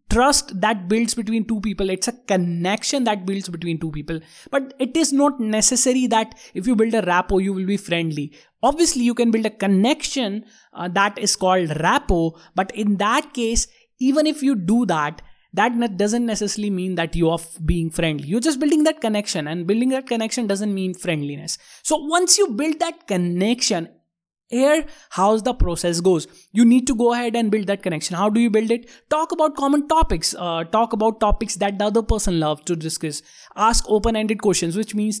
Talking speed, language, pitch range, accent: 195 wpm, English, 185-240 Hz, Indian